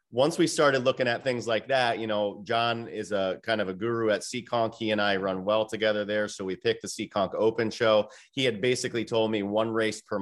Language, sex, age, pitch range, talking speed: English, male, 30-49, 95-115 Hz, 240 wpm